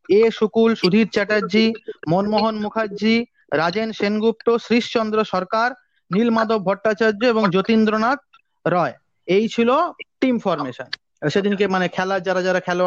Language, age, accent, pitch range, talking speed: English, 30-49, Indian, 185-225 Hz, 105 wpm